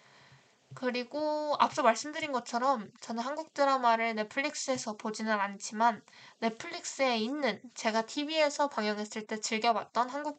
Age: 20-39